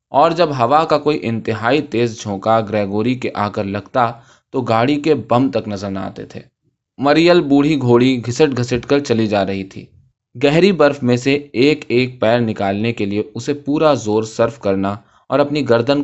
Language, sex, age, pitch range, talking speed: Urdu, male, 20-39, 115-150 Hz, 185 wpm